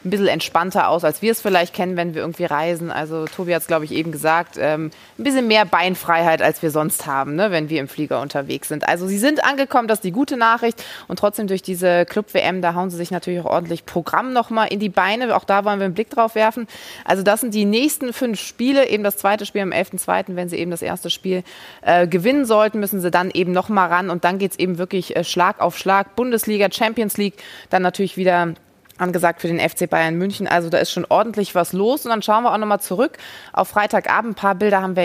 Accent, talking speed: German, 245 wpm